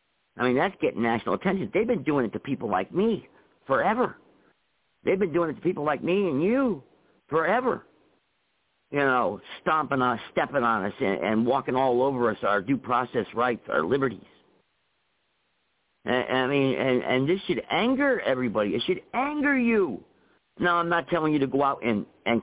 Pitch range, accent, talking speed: 125-195 Hz, American, 180 wpm